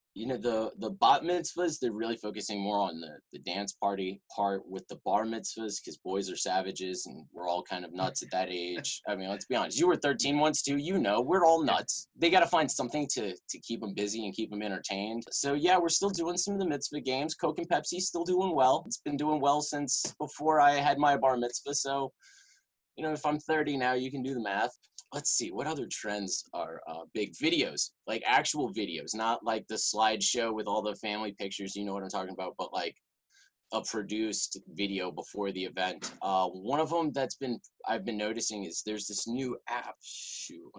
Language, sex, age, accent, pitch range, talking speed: English, male, 20-39, American, 100-150 Hz, 220 wpm